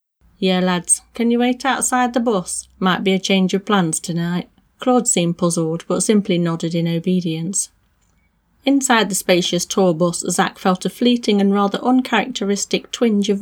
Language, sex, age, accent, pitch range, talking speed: English, female, 30-49, British, 170-210 Hz, 165 wpm